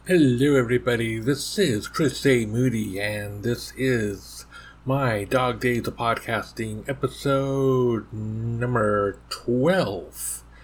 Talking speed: 100 wpm